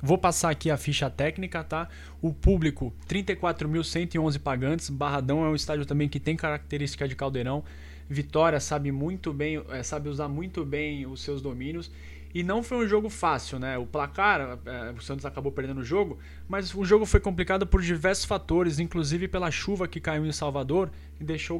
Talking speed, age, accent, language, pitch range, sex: 170 wpm, 20-39, Brazilian, Portuguese, 135-165 Hz, male